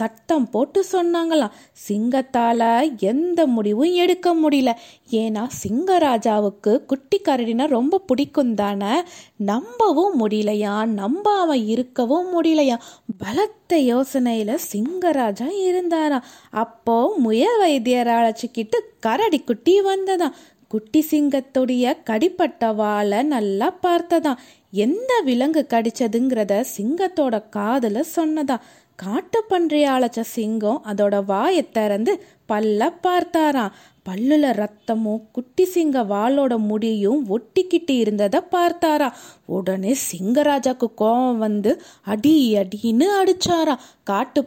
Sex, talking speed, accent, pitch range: female, 90 wpm, native, 225-340 Hz